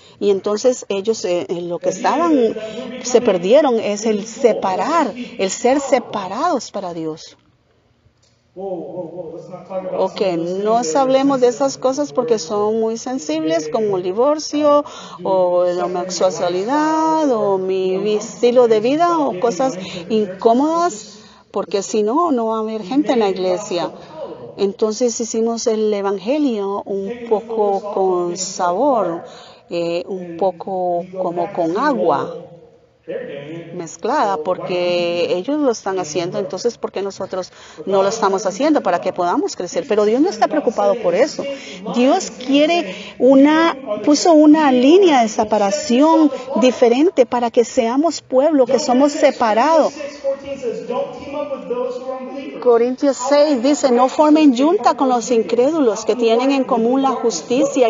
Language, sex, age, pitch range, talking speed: English, female, 40-59, 200-275 Hz, 125 wpm